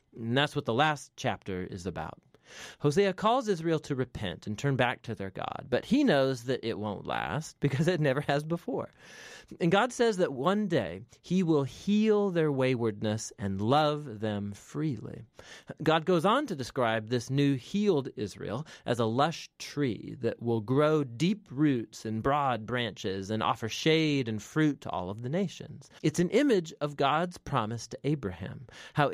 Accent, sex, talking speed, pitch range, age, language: American, male, 175 wpm, 110-160 Hz, 30-49, English